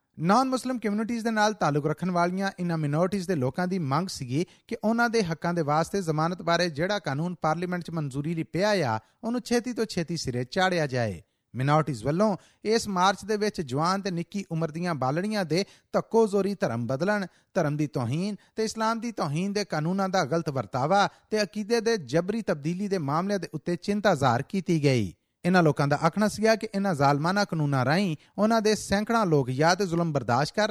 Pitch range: 150-205 Hz